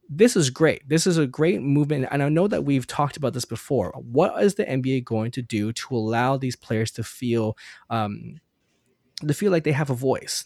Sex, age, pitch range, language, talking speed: male, 10-29, 115-145 Hz, English, 220 wpm